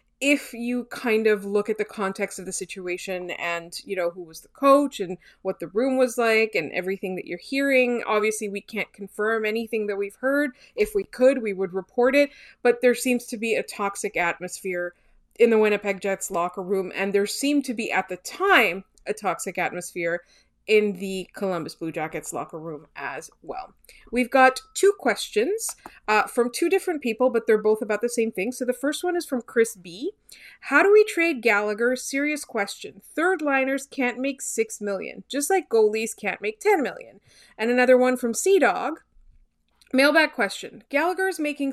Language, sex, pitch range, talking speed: English, female, 200-285 Hz, 190 wpm